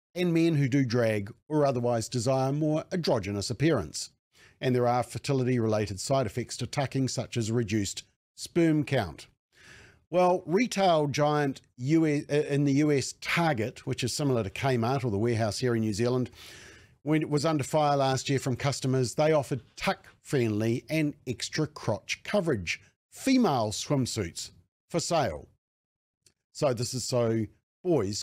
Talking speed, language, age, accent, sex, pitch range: 145 wpm, English, 50-69, Australian, male, 115-155 Hz